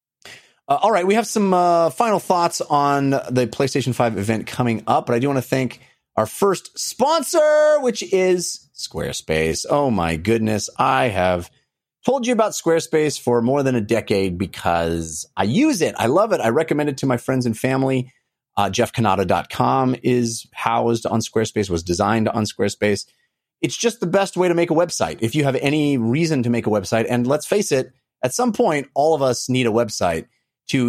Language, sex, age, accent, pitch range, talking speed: English, male, 30-49, American, 120-170 Hz, 190 wpm